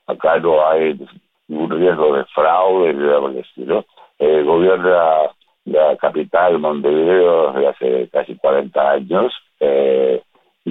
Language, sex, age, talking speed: Spanish, male, 60-79, 95 wpm